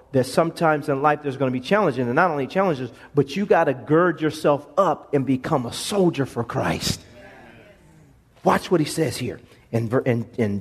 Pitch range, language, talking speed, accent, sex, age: 125-195 Hz, English, 185 wpm, American, male, 40-59